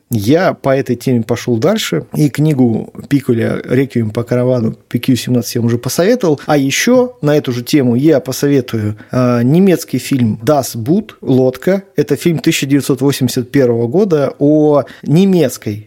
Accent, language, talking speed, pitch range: native, Russian, 135 wpm, 120-160 Hz